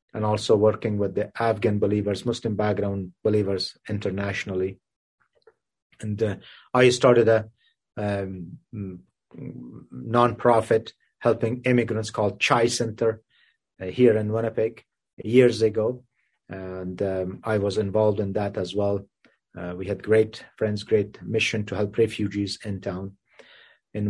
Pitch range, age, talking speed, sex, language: 100-125 Hz, 30-49, 125 wpm, male, English